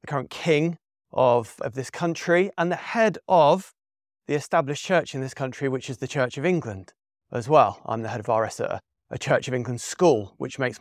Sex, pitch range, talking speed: male, 125-185 Hz, 215 wpm